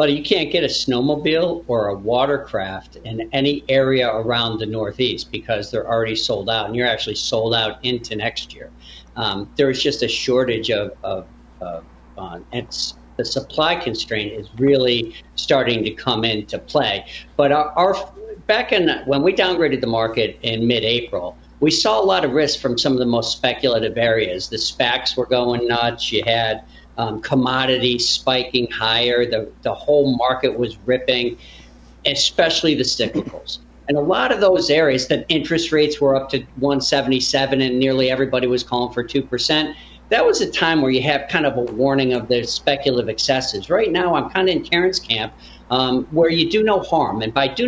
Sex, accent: male, American